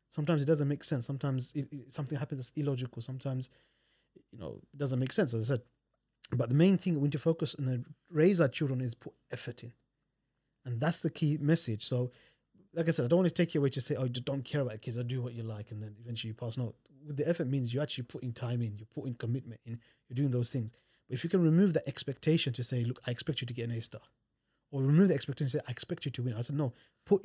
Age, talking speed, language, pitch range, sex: 30-49, 270 wpm, English, 125-155 Hz, male